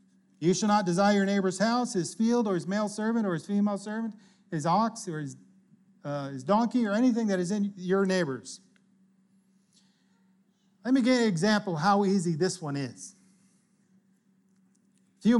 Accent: American